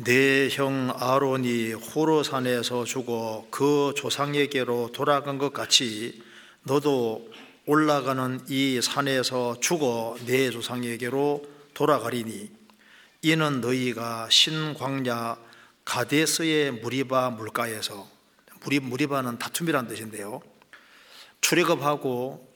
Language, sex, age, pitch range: Korean, male, 40-59, 120-145 Hz